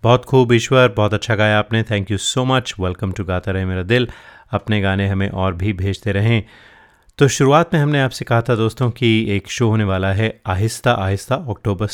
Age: 30-49